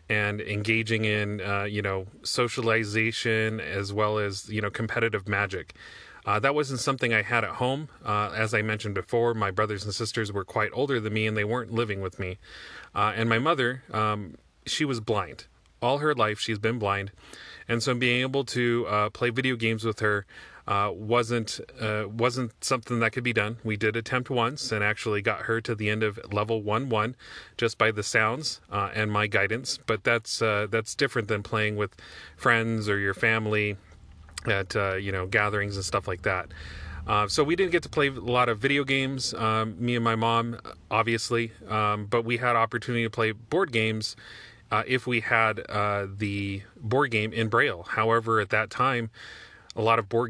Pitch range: 105-115 Hz